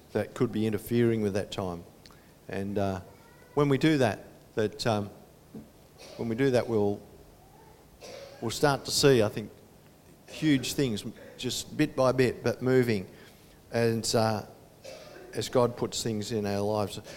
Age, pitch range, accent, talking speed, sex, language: 50-69, 105-130 Hz, Australian, 150 wpm, male, English